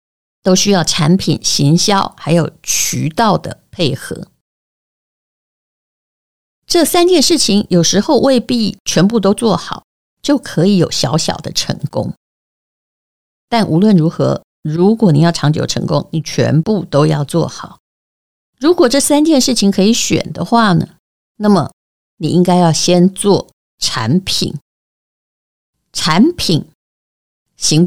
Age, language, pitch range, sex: 50-69, Chinese, 165-230 Hz, female